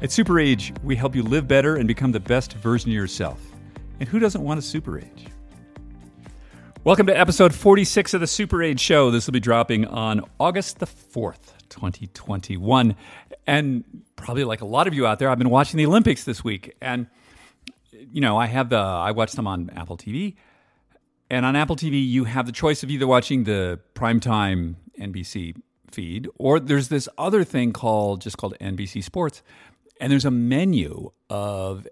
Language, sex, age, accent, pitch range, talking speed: English, male, 40-59, American, 100-145 Hz, 185 wpm